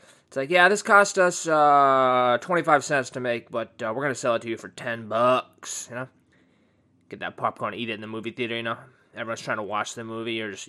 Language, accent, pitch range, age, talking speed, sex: English, American, 110-140 Hz, 20-39, 245 wpm, male